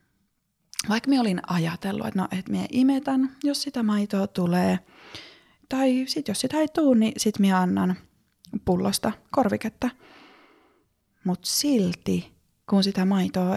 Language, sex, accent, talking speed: Finnish, female, native, 135 wpm